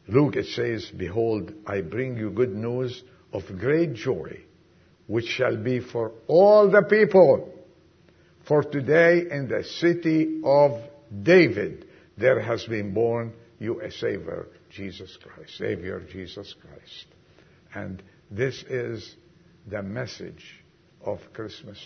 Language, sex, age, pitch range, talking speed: English, male, 60-79, 110-165 Hz, 125 wpm